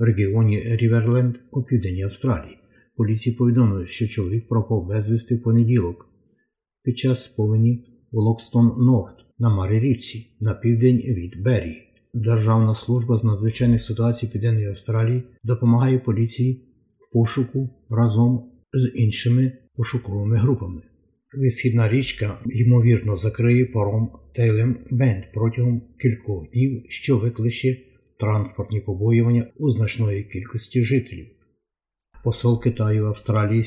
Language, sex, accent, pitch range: Ukrainian, male, native, 110-125 Hz